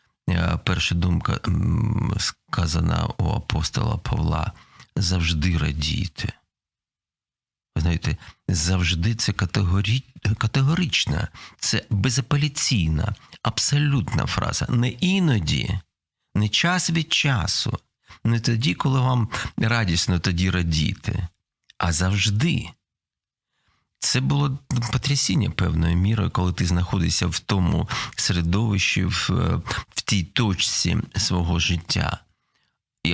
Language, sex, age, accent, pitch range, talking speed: Ukrainian, male, 40-59, native, 95-125 Hz, 85 wpm